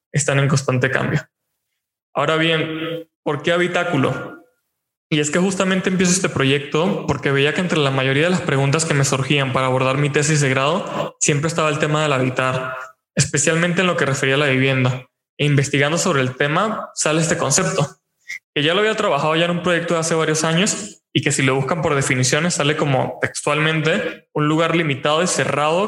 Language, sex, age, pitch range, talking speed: Spanish, male, 20-39, 135-165 Hz, 195 wpm